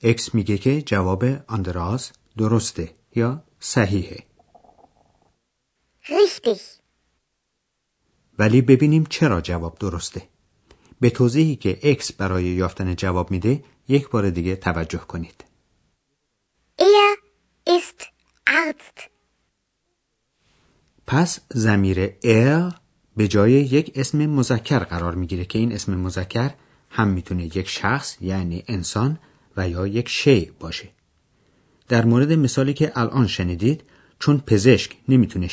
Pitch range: 95-135 Hz